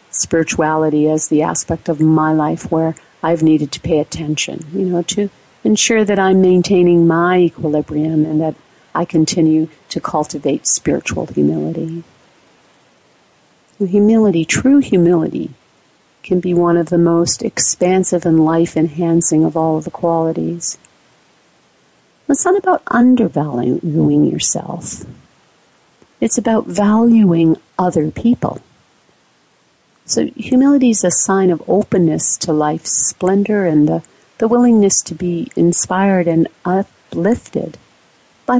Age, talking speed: 50-69, 120 wpm